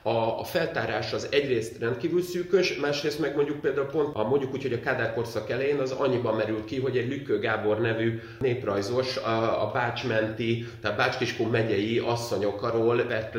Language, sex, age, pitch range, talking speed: Hungarian, male, 30-49, 110-135 Hz, 160 wpm